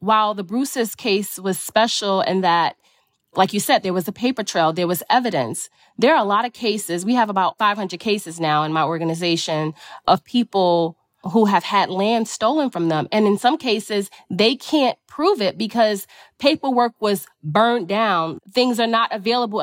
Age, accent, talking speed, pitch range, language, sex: 30-49, American, 185 wpm, 185-235 Hz, English, female